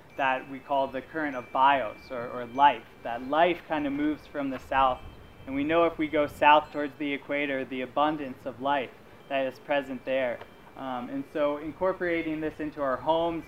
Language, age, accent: English, 20-39, American